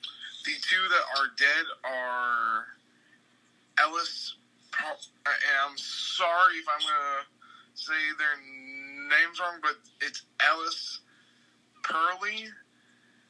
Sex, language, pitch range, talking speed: male, English, 130-160 Hz, 95 wpm